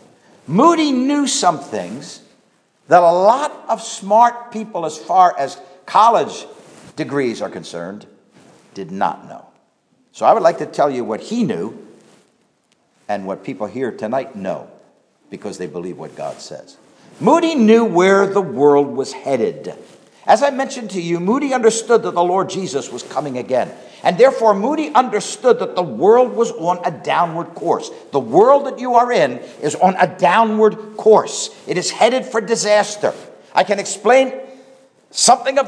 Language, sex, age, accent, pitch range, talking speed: English, male, 60-79, American, 185-265 Hz, 160 wpm